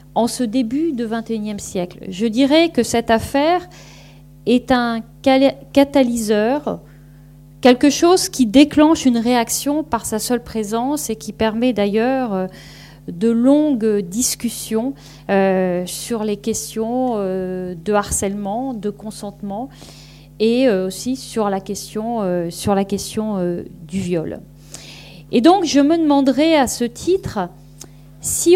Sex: female